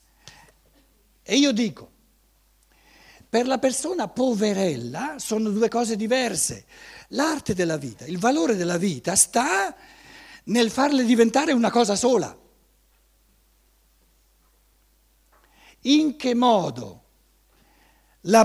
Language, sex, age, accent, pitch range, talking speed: Italian, male, 60-79, native, 180-260 Hz, 95 wpm